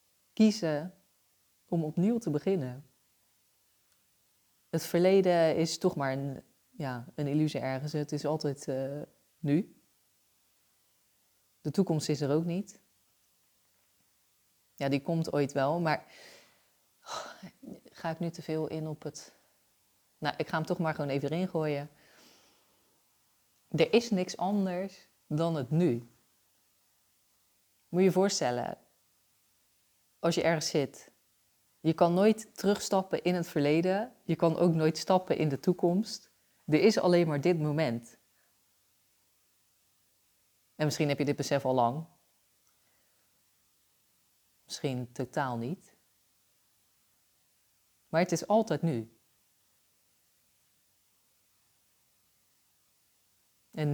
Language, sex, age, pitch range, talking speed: Dutch, female, 30-49, 120-170 Hz, 115 wpm